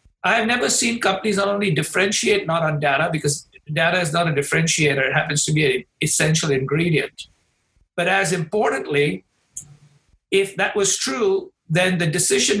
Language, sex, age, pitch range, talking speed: English, male, 60-79, 150-185 Hz, 160 wpm